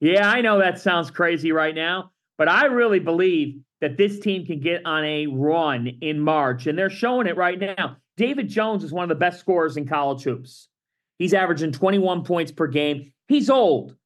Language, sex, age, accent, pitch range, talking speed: English, male, 40-59, American, 160-220 Hz, 200 wpm